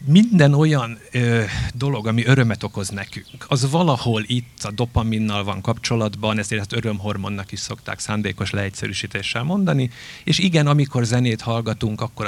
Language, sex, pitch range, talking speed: Hungarian, male, 100-125 Hz, 135 wpm